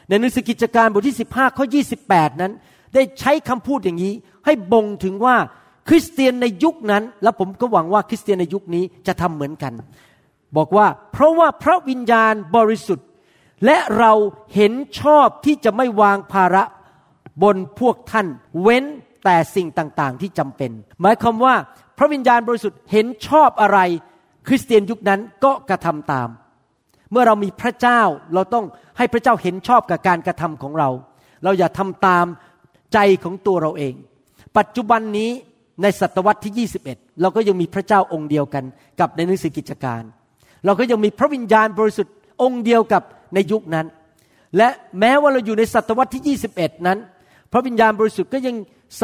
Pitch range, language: 175-235 Hz, Thai